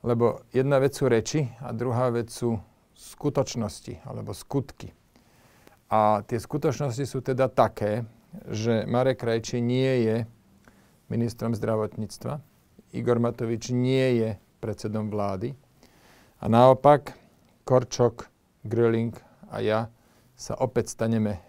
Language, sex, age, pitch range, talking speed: Slovak, male, 40-59, 115-130 Hz, 110 wpm